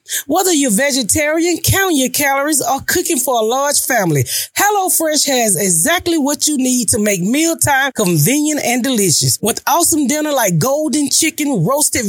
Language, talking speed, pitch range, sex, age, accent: English, 155 wpm, 225-315 Hz, female, 30-49, American